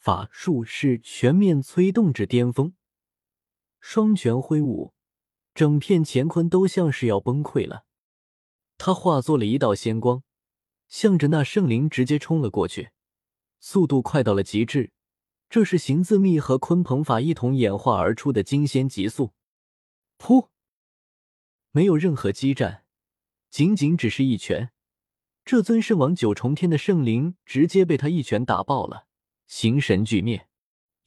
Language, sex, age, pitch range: Chinese, male, 20-39, 110-160 Hz